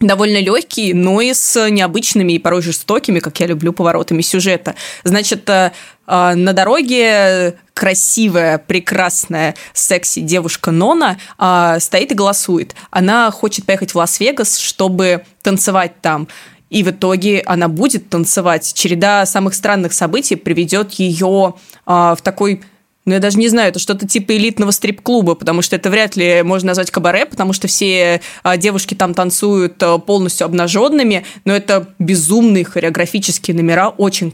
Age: 20-39